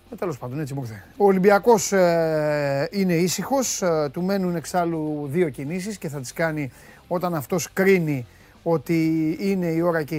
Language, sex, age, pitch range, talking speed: Greek, male, 30-49, 160-215 Hz, 155 wpm